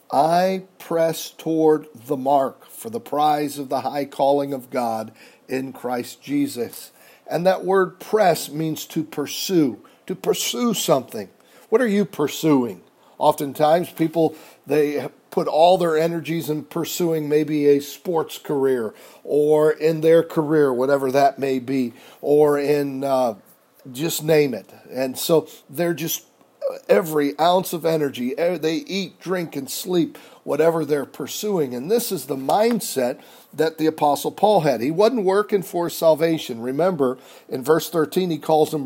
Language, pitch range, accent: English, 140-175 Hz, American